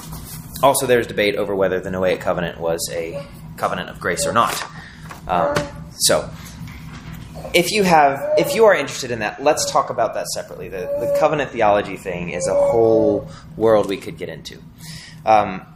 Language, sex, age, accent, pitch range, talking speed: English, male, 20-39, American, 115-155 Hz, 170 wpm